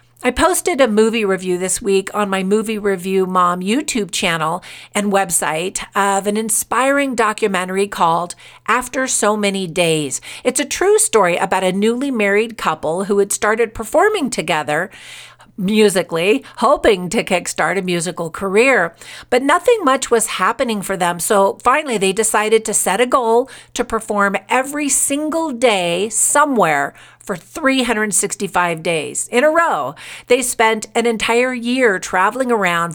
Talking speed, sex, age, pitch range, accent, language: 145 wpm, female, 50-69, 185-245 Hz, American, English